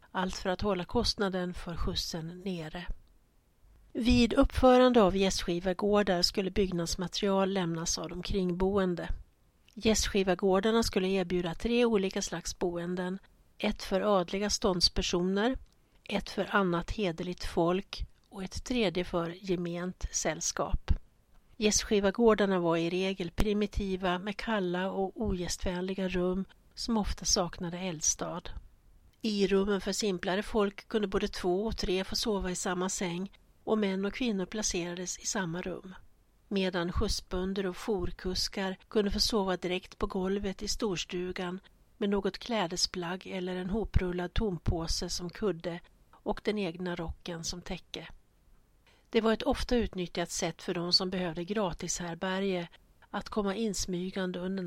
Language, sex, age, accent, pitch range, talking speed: Swedish, female, 60-79, native, 175-205 Hz, 130 wpm